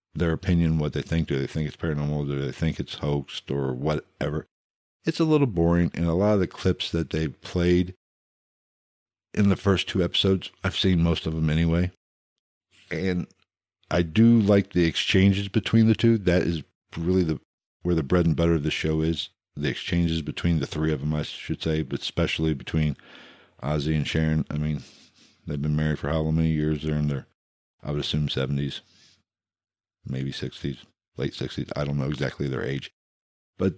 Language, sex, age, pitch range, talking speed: English, male, 60-79, 75-95 Hz, 190 wpm